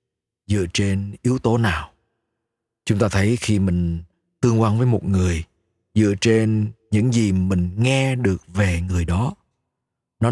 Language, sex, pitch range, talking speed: Vietnamese, male, 95-120 Hz, 150 wpm